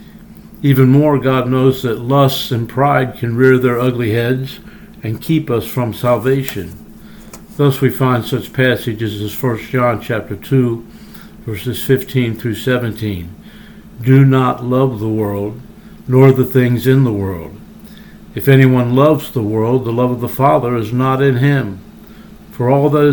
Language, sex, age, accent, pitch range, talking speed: English, male, 60-79, American, 115-140 Hz, 155 wpm